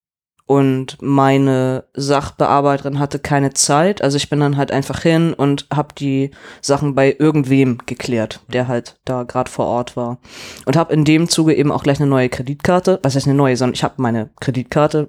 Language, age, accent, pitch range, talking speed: German, 20-39, German, 140-175 Hz, 185 wpm